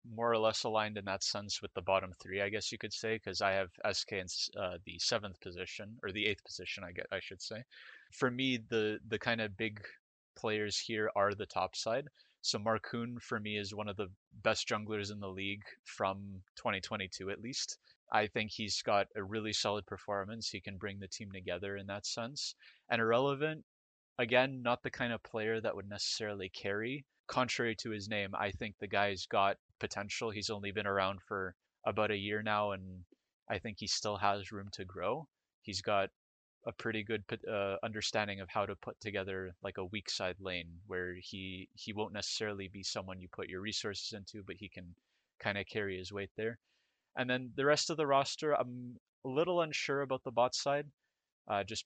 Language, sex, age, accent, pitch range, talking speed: English, male, 20-39, American, 95-115 Hz, 205 wpm